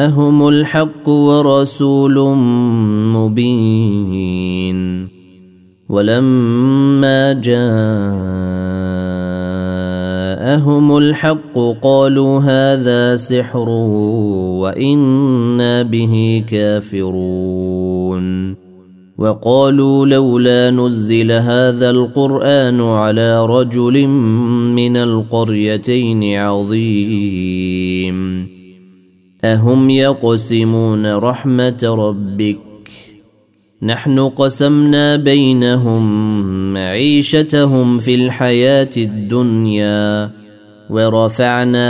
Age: 30-49